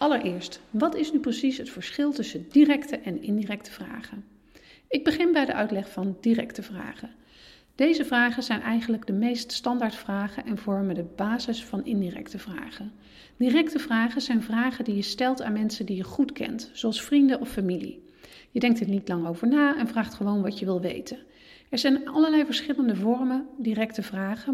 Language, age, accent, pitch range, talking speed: Dutch, 40-59, Dutch, 210-270 Hz, 180 wpm